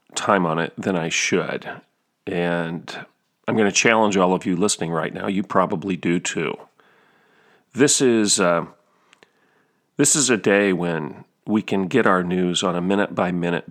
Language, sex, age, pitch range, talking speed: English, male, 40-59, 90-110 Hz, 160 wpm